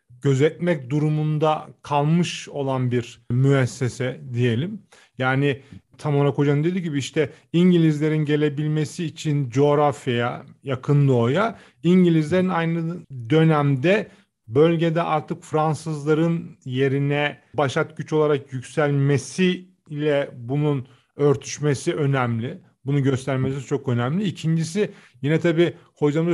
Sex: male